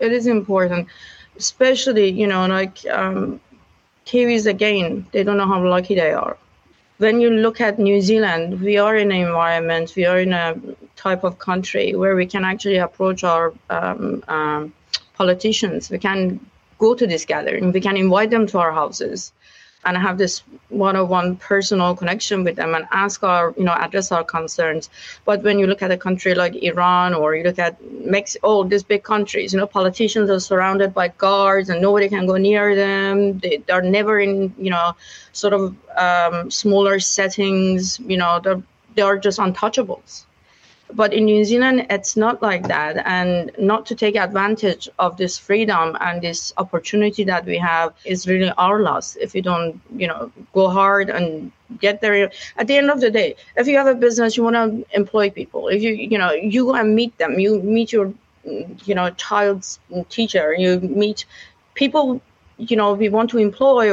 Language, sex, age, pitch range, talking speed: English, female, 30-49, 180-215 Hz, 185 wpm